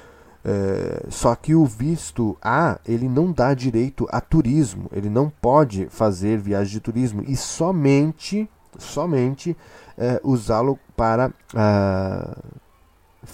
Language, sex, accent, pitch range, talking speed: Portuguese, male, Brazilian, 100-145 Hz, 115 wpm